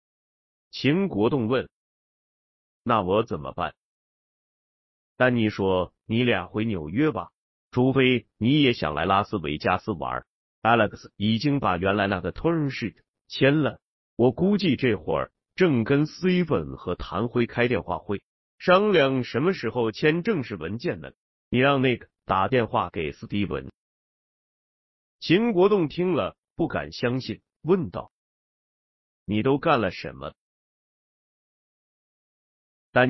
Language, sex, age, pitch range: Chinese, male, 30-49, 100-140 Hz